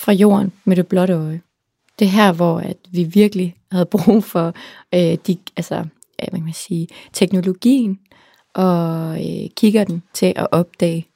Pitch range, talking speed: 180-205 Hz, 150 wpm